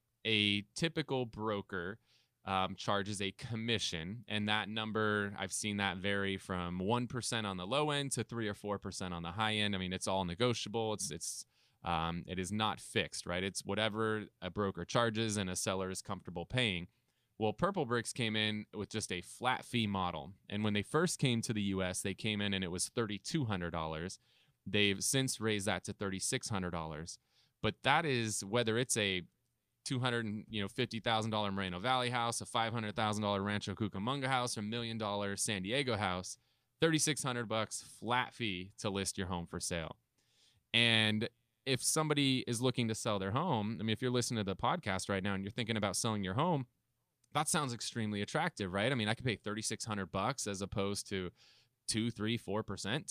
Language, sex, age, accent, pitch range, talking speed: English, male, 20-39, American, 100-120 Hz, 180 wpm